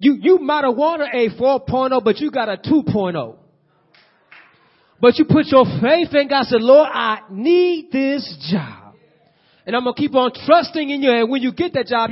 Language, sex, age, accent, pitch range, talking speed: English, male, 30-49, American, 230-295 Hz, 195 wpm